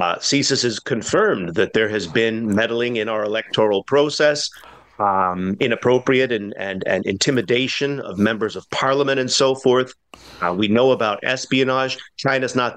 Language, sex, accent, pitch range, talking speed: English, male, American, 115-140 Hz, 155 wpm